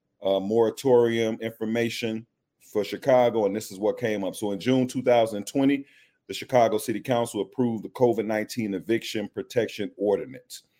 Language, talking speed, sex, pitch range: English, 140 wpm, male, 100-125 Hz